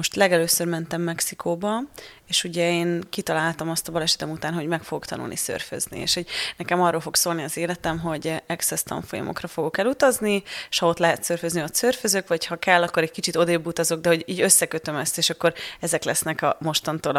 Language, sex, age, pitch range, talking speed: Hungarian, female, 30-49, 160-180 Hz, 195 wpm